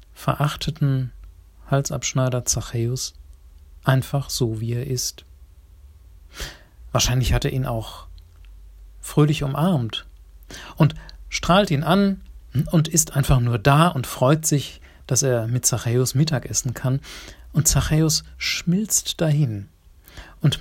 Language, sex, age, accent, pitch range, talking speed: German, male, 40-59, German, 95-145 Hz, 115 wpm